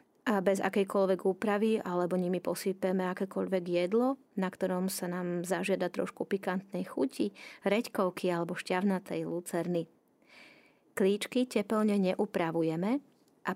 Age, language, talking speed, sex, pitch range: 30-49, Slovak, 110 wpm, female, 185-215 Hz